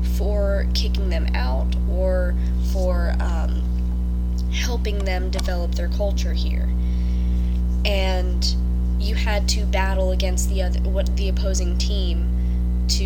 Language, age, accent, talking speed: English, 10-29, American, 120 wpm